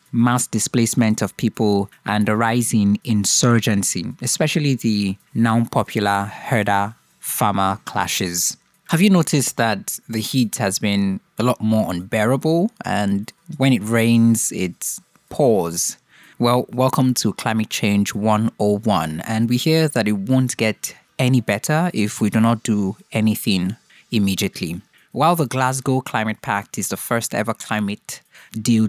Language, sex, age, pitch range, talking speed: English, male, 20-39, 105-130 Hz, 135 wpm